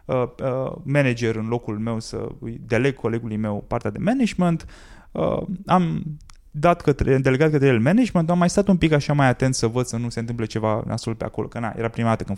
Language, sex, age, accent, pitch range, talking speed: Romanian, male, 20-39, native, 110-180 Hz, 205 wpm